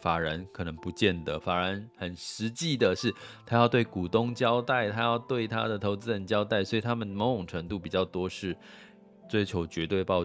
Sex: male